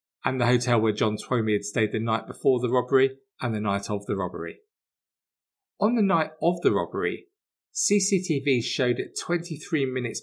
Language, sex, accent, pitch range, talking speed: English, male, British, 120-170 Hz, 175 wpm